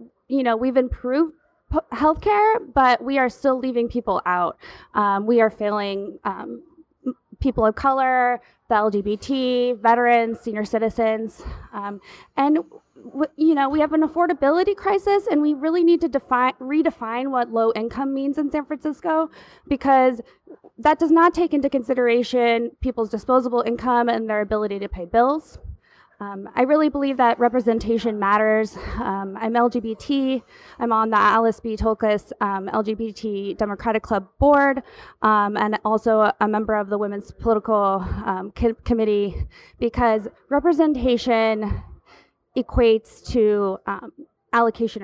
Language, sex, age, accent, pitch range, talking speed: English, female, 20-39, American, 220-285 Hz, 135 wpm